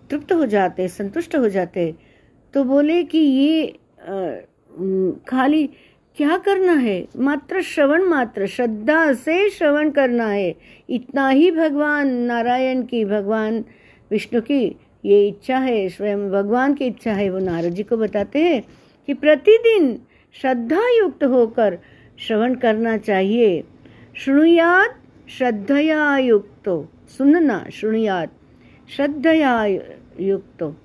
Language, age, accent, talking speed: Hindi, 50-69, native, 115 wpm